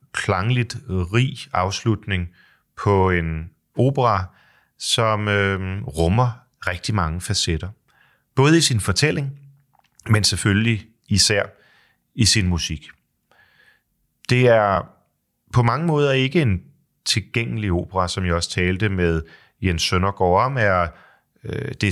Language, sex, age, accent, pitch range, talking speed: Danish, male, 30-49, native, 90-120 Hz, 115 wpm